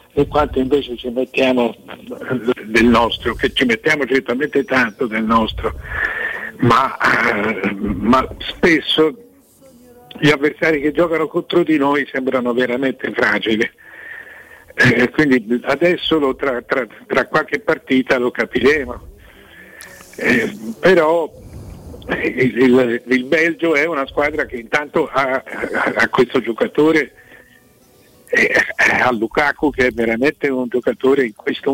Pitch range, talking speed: 120-160 Hz, 120 wpm